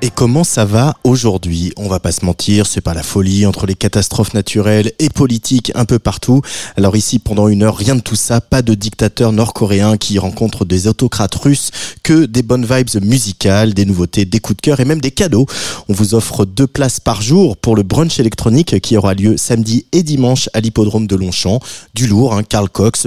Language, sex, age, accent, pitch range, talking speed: French, male, 20-39, French, 100-130 Hz, 215 wpm